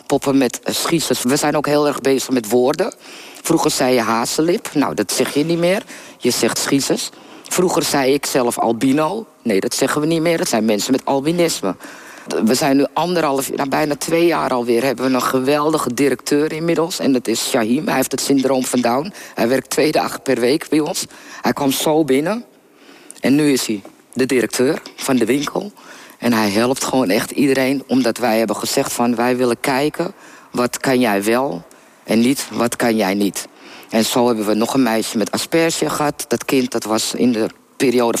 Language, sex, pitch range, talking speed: Dutch, female, 120-150 Hz, 200 wpm